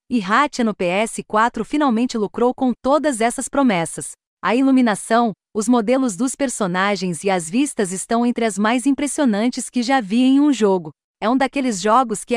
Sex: female